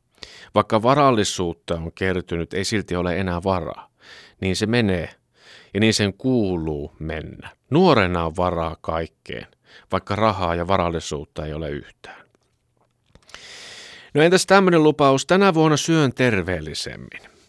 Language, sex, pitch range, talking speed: Finnish, male, 90-120 Hz, 125 wpm